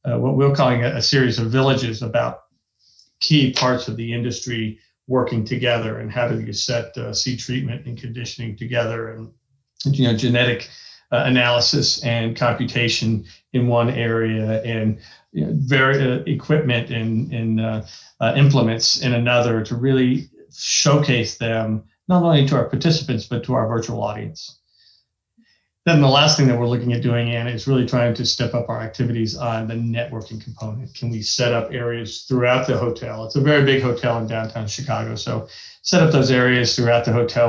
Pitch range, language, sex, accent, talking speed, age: 115-130 Hz, English, male, American, 175 wpm, 40-59